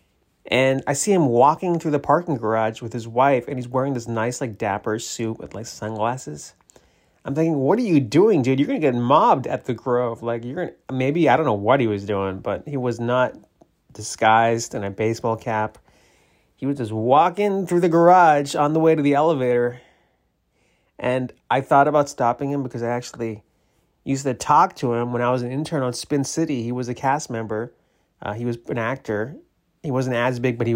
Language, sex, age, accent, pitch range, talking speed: English, male, 30-49, American, 115-145 Hz, 215 wpm